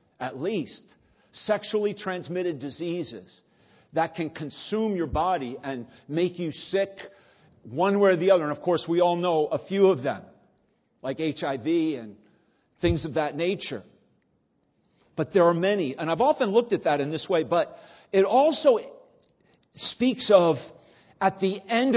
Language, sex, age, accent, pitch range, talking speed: English, male, 50-69, American, 145-200 Hz, 155 wpm